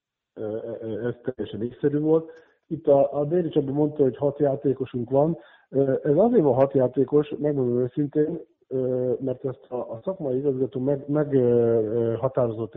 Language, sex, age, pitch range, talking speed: Hungarian, male, 50-69, 115-150 Hz, 120 wpm